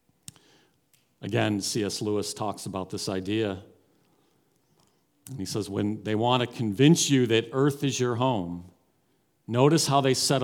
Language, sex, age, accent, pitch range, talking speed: English, male, 40-59, American, 100-145 Hz, 145 wpm